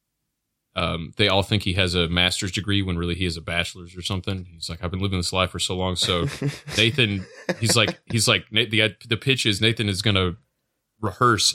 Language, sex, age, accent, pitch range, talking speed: English, male, 20-39, American, 95-110 Hz, 220 wpm